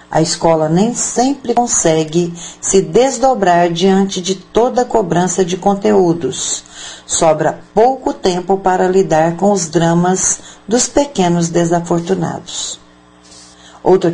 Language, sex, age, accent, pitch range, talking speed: Portuguese, female, 50-69, Brazilian, 160-215 Hz, 110 wpm